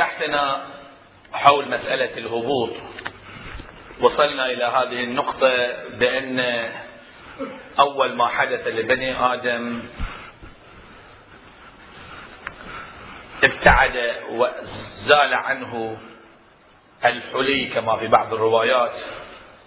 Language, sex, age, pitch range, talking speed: Arabic, male, 40-59, 120-135 Hz, 65 wpm